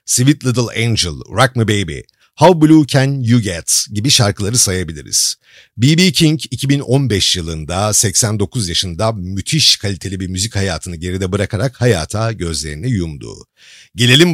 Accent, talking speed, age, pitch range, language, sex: native, 130 wpm, 50-69, 100-140 Hz, Turkish, male